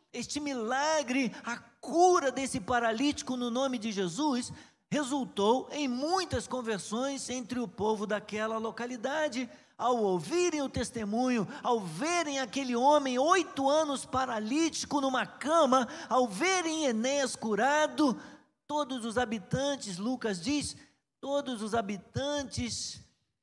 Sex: male